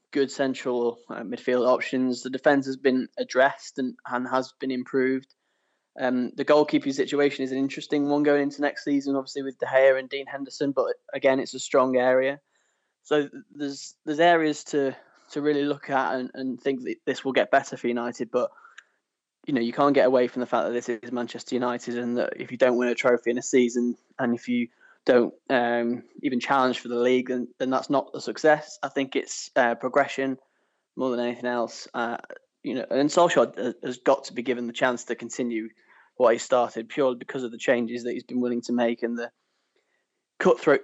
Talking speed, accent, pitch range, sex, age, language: 205 wpm, British, 120-140 Hz, male, 10-29, English